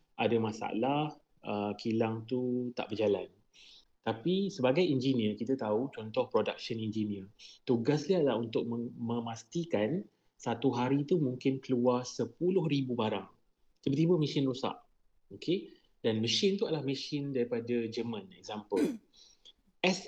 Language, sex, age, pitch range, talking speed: Malay, male, 30-49, 120-150 Hz, 115 wpm